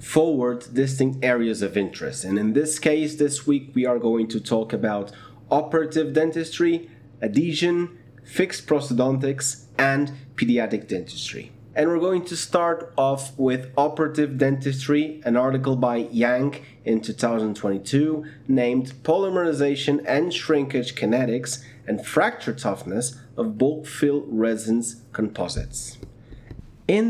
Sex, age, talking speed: male, 30-49, 120 wpm